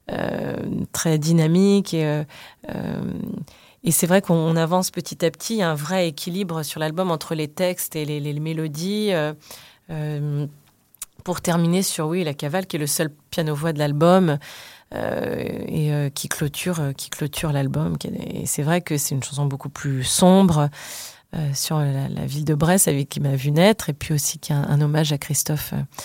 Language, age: French, 30-49